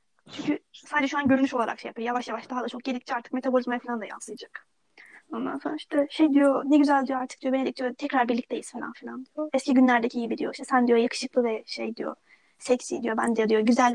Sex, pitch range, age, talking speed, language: female, 245-285 Hz, 20-39, 230 wpm, Turkish